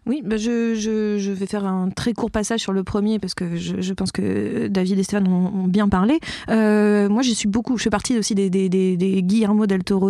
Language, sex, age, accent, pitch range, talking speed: French, female, 20-39, French, 195-240 Hz, 255 wpm